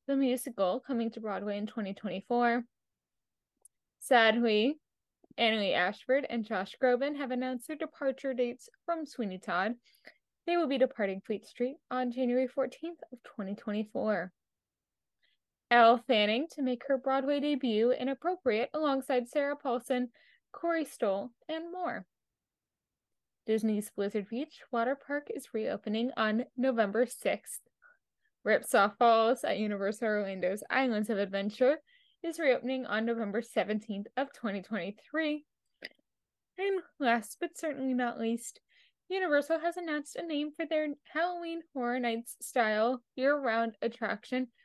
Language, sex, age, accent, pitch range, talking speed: English, female, 10-29, American, 225-295 Hz, 120 wpm